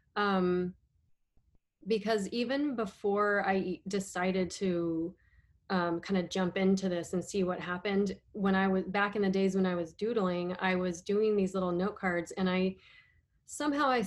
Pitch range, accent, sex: 180-205 Hz, American, female